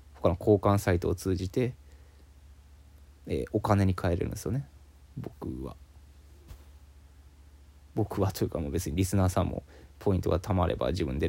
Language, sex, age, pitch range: Japanese, male, 20-39, 70-110 Hz